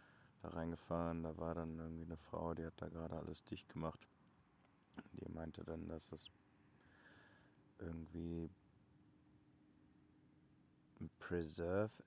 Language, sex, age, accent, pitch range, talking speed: German, male, 30-49, German, 80-95 Hz, 115 wpm